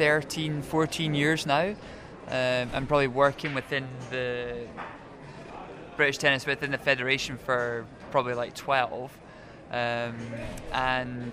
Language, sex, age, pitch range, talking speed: English, male, 20-39, 125-140 Hz, 110 wpm